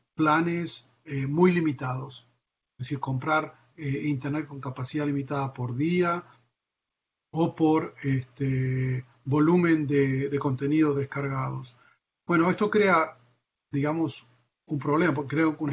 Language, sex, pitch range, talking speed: Spanish, male, 135-160 Hz, 115 wpm